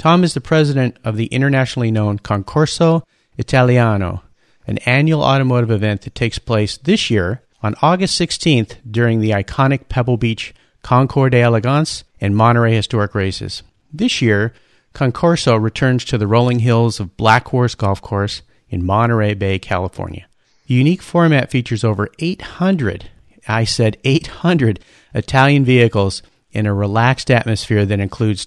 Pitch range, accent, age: 105-135 Hz, American, 40-59